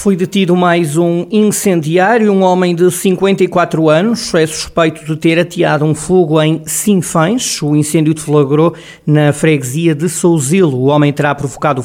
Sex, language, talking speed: male, Portuguese, 150 wpm